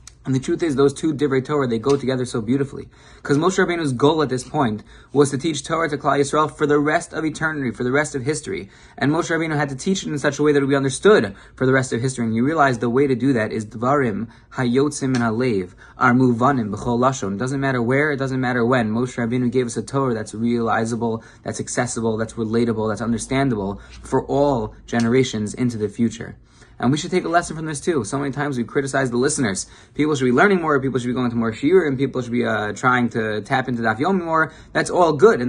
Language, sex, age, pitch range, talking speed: English, male, 20-39, 120-150 Hz, 235 wpm